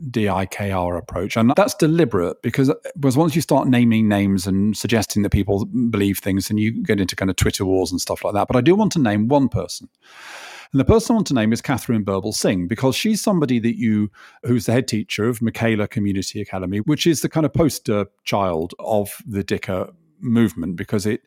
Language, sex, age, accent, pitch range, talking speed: English, male, 40-59, British, 100-145 Hz, 210 wpm